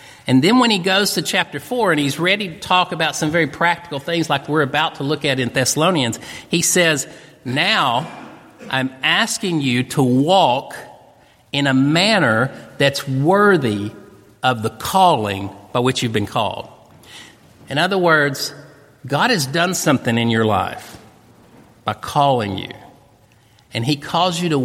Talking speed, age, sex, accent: 160 wpm, 50-69, male, American